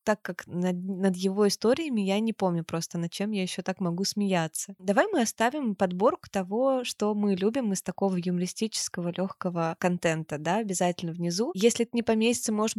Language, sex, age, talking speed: Russian, female, 20-39, 180 wpm